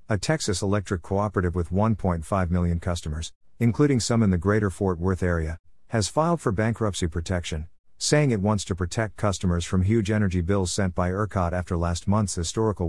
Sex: male